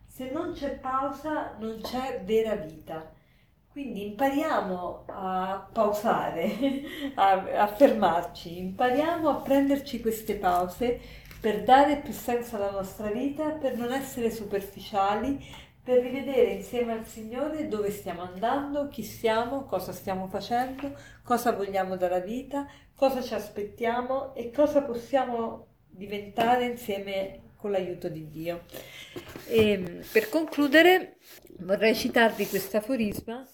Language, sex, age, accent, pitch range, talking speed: Italian, female, 40-59, native, 185-255 Hz, 115 wpm